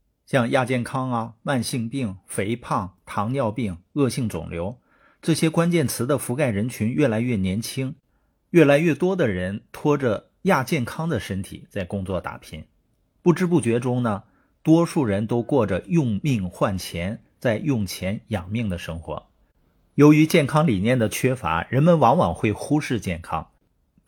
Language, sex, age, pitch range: Chinese, male, 50-69, 100-140 Hz